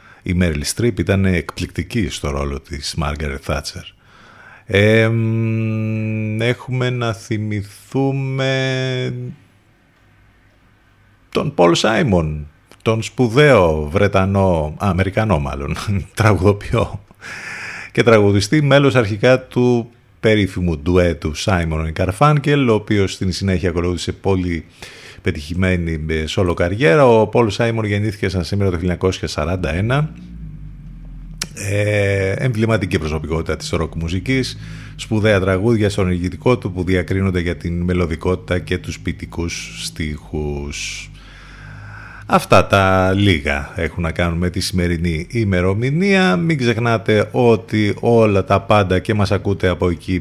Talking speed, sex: 110 wpm, male